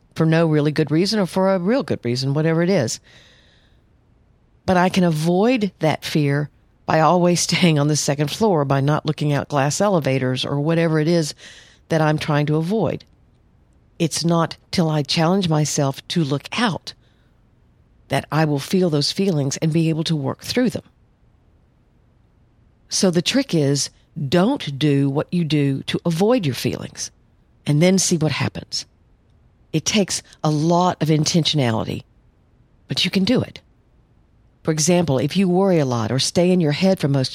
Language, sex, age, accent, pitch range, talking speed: English, female, 50-69, American, 140-175 Hz, 170 wpm